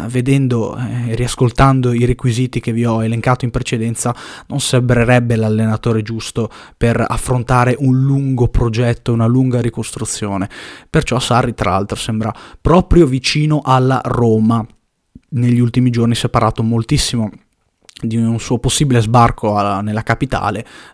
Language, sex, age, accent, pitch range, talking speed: Italian, male, 20-39, native, 115-140 Hz, 130 wpm